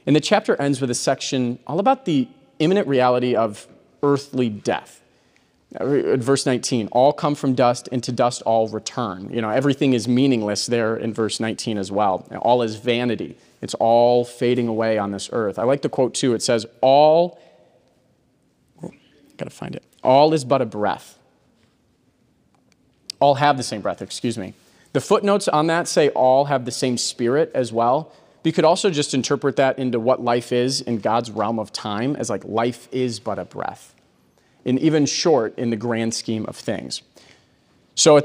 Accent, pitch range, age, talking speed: American, 115-140 Hz, 30-49, 180 wpm